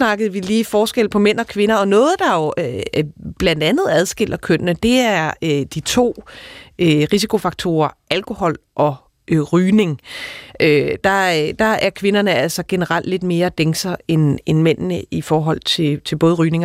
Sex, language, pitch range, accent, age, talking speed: female, Danish, 155-205 Hz, native, 30-49, 150 wpm